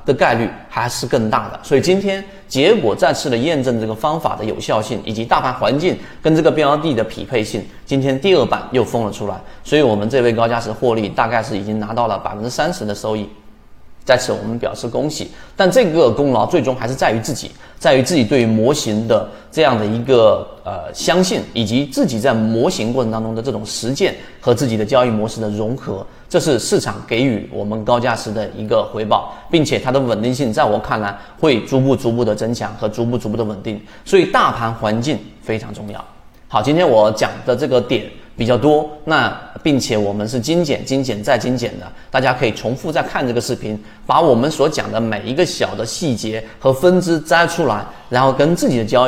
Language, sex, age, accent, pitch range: Chinese, male, 30-49, native, 110-135 Hz